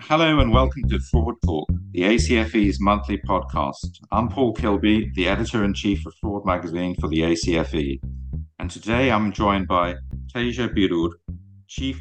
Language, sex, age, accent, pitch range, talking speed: English, male, 50-69, British, 85-110 Hz, 145 wpm